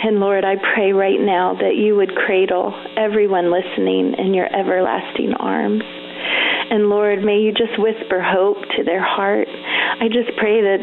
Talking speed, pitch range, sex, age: 165 wpm, 200-235 Hz, female, 40-59